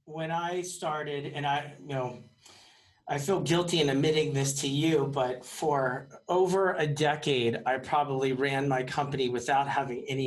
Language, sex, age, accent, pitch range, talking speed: English, male, 40-59, American, 140-170 Hz, 165 wpm